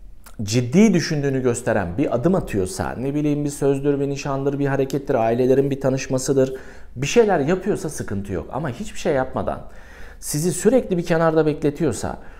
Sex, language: male, Turkish